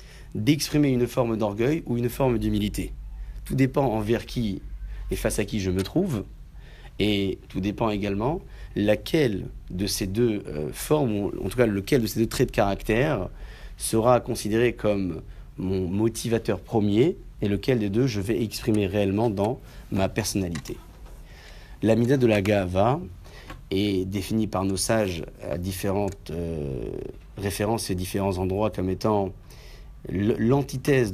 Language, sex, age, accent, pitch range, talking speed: French, male, 40-59, French, 95-120 Hz, 145 wpm